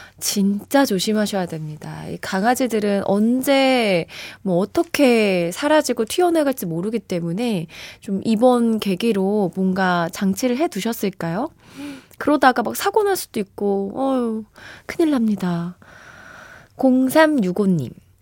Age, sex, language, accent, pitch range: 20-39, female, Korean, native, 180-265 Hz